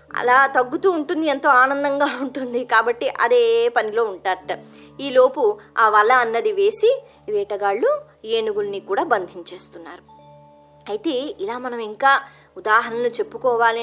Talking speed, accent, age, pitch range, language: 110 wpm, native, 20-39, 230-360 Hz, Telugu